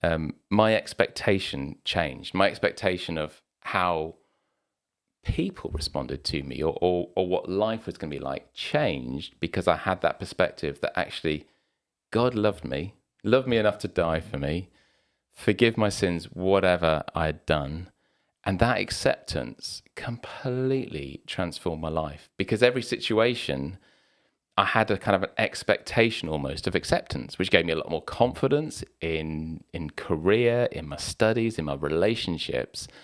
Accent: British